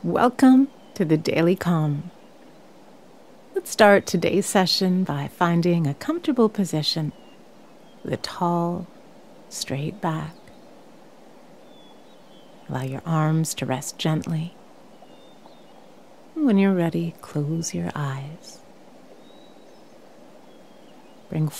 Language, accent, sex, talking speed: English, American, female, 90 wpm